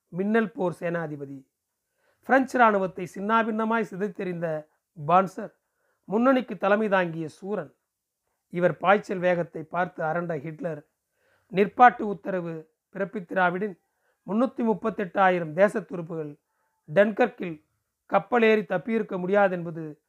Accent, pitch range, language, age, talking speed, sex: native, 170-215 Hz, Tamil, 40-59, 70 wpm, male